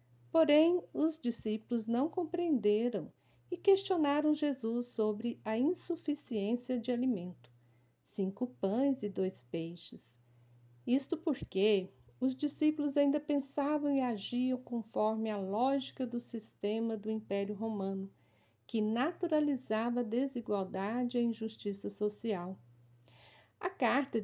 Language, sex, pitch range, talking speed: Portuguese, female, 195-255 Hz, 110 wpm